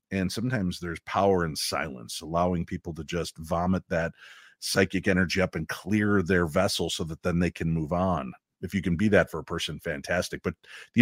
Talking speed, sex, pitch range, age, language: 200 wpm, male, 90-140 Hz, 50-69, English